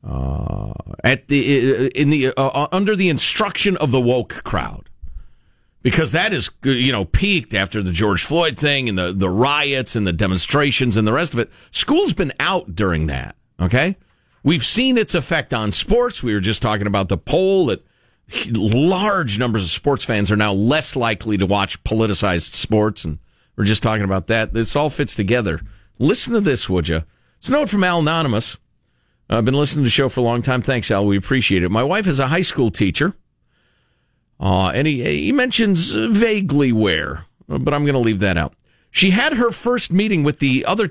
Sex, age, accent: male, 50-69, American